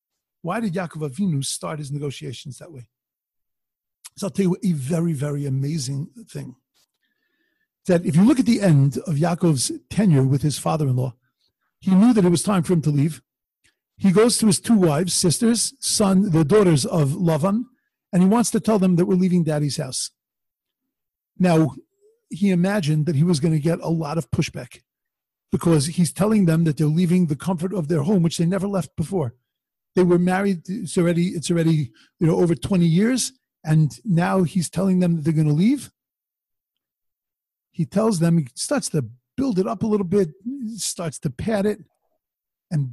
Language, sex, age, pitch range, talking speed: English, male, 50-69, 155-200 Hz, 185 wpm